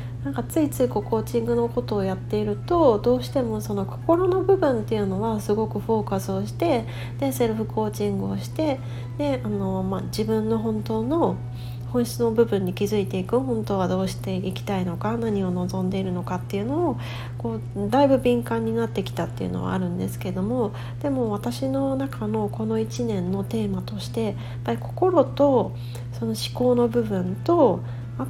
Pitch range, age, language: 105-120 Hz, 40-59, Japanese